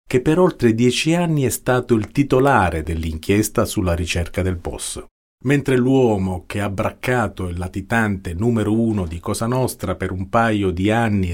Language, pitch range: Italian, 90-115 Hz